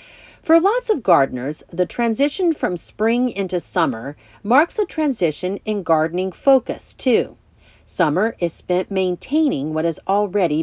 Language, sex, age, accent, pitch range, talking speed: English, female, 50-69, American, 160-245 Hz, 135 wpm